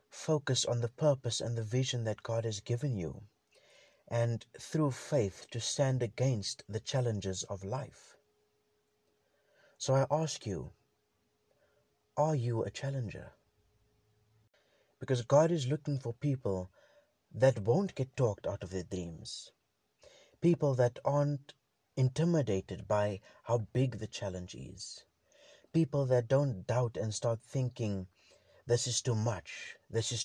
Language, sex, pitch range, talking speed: English, male, 110-135 Hz, 135 wpm